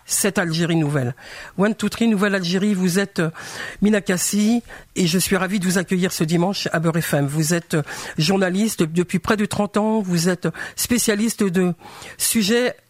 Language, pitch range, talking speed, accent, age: French, 170-205 Hz, 170 wpm, French, 50-69